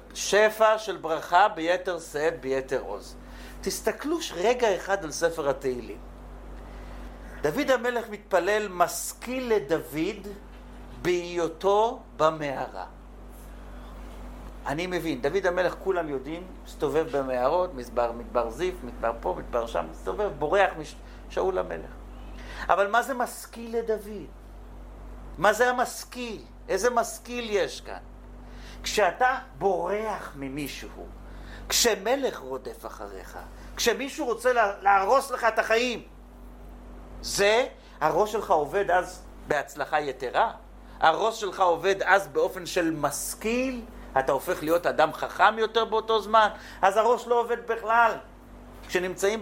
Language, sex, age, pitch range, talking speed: Hebrew, male, 50-69, 165-225 Hz, 110 wpm